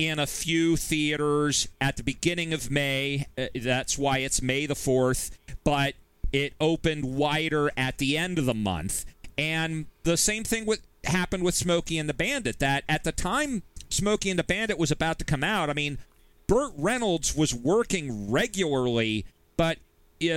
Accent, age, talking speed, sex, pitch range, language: American, 40-59, 165 wpm, male, 130-170 Hz, English